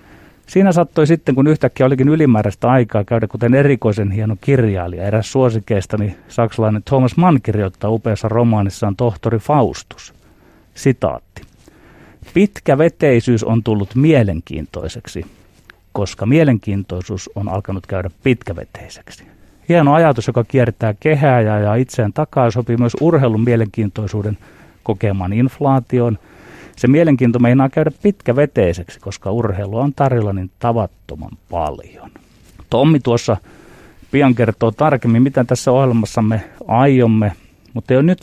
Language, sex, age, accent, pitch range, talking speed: Finnish, male, 30-49, native, 105-130 Hz, 115 wpm